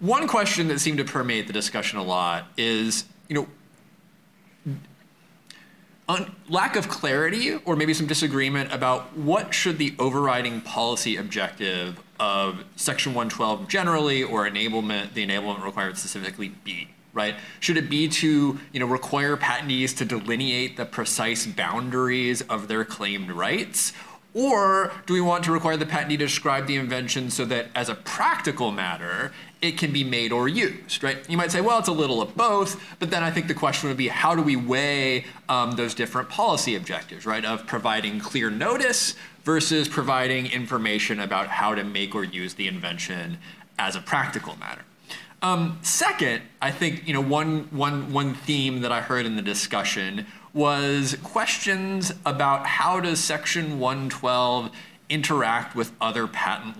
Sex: male